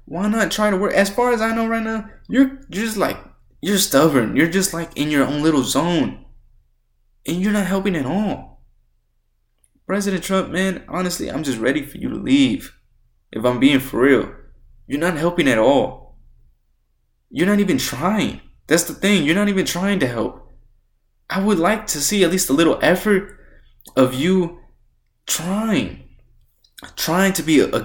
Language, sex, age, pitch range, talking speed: English, male, 20-39, 125-200 Hz, 180 wpm